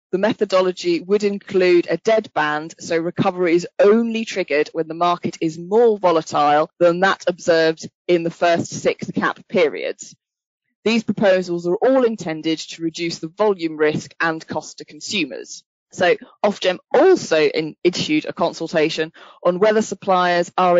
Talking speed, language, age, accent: 145 wpm, English, 20-39, British